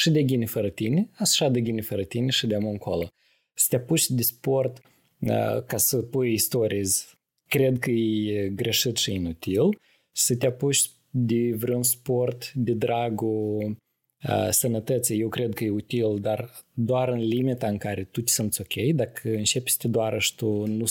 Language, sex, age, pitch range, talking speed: Romanian, male, 20-39, 105-130 Hz, 180 wpm